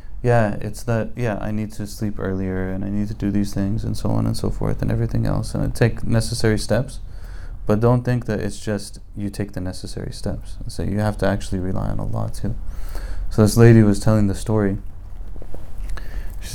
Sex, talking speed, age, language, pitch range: male, 220 wpm, 20-39, English, 95-110 Hz